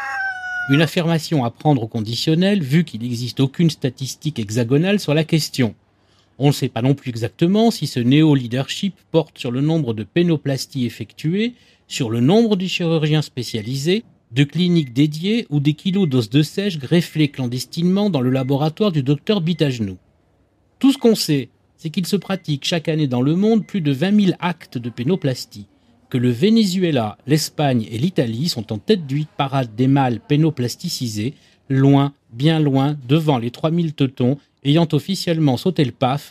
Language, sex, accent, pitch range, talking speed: French, male, French, 130-175 Hz, 170 wpm